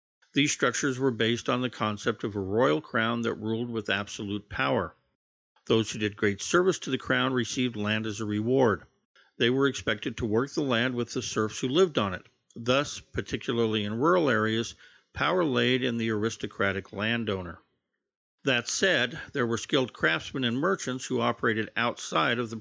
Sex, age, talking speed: male, 50-69, 180 wpm